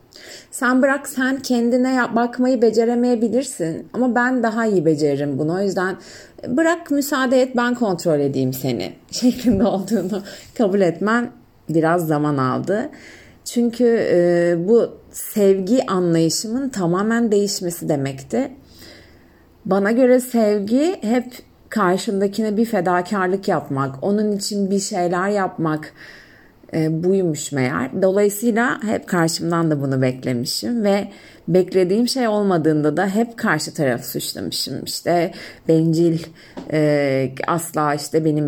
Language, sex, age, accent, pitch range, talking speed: Turkish, female, 40-59, native, 155-230 Hz, 110 wpm